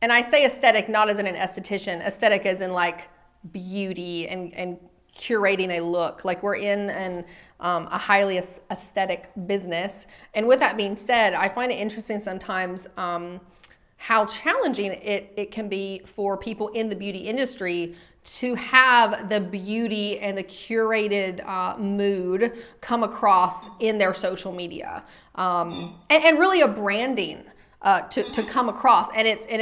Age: 30-49